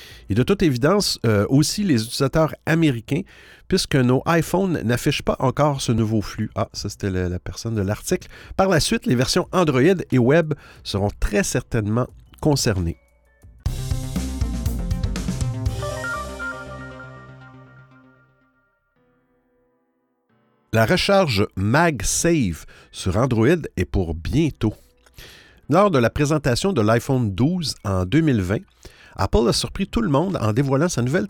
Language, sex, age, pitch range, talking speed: French, male, 50-69, 110-160 Hz, 125 wpm